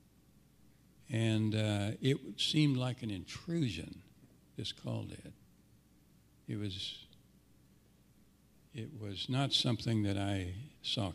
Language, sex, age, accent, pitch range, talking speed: English, male, 60-79, American, 105-125 Hz, 100 wpm